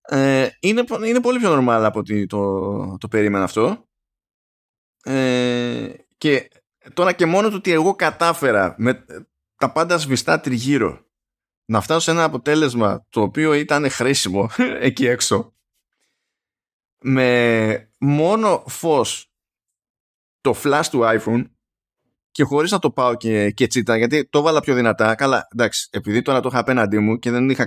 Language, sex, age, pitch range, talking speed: Greek, male, 20-39, 105-140 Hz, 150 wpm